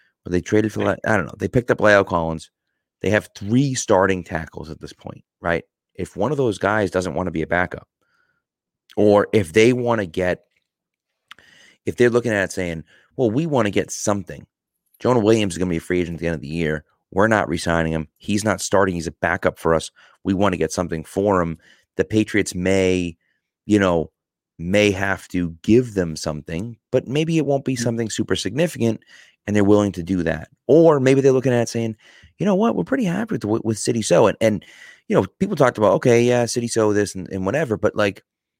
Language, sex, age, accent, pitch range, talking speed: English, male, 30-49, American, 90-115 Hz, 220 wpm